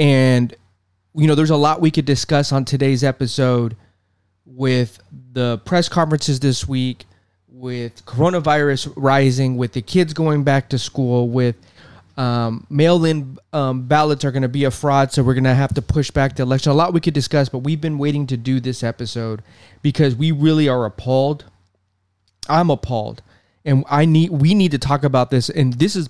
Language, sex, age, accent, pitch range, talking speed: English, male, 20-39, American, 115-150 Hz, 185 wpm